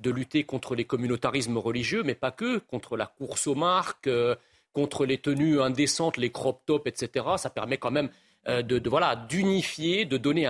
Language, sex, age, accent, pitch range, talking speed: French, male, 40-59, French, 130-170 Hz, 195 wpm